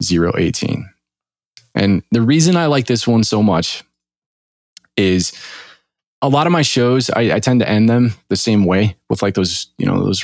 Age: 20-39